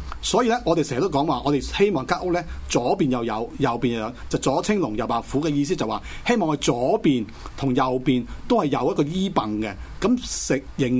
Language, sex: Chinese, male